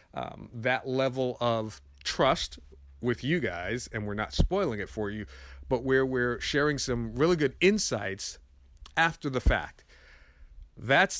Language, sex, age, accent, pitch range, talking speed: English, male, 40-59, American, 105-130 Hz, 145 wpm